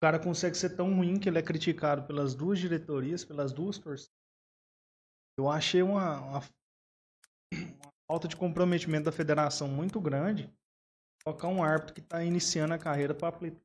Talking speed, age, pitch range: 165 wpm, 20-39, 140-195 Hz